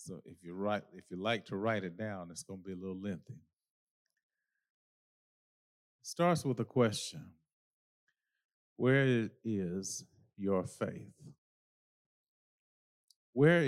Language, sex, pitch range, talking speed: English, male, 95-120 Hz, 125 wpm